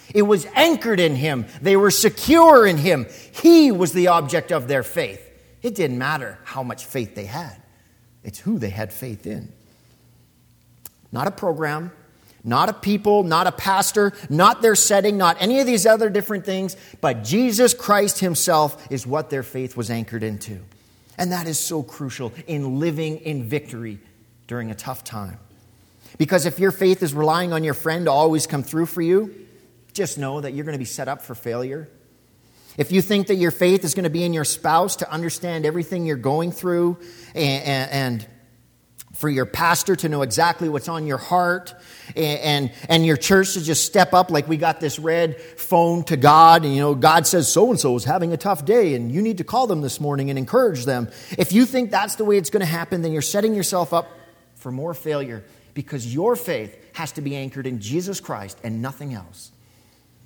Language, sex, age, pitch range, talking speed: English, male, 40-59, 130-180 Hz, 200 wpm